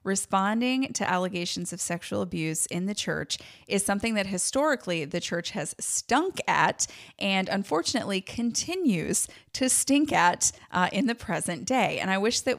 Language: English